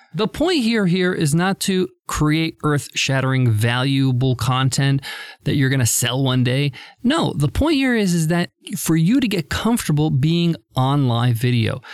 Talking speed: 170 wpm